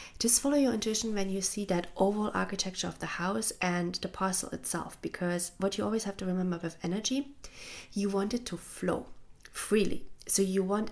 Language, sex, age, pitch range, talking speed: English, female, 30-49, 175-205 Hz, 190 wpm